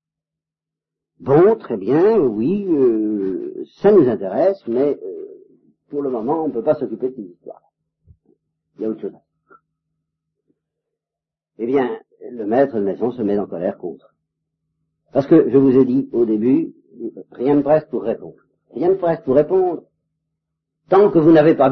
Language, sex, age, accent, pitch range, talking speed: French, male, 50-69, French, 155-255 Hz, 165 wpm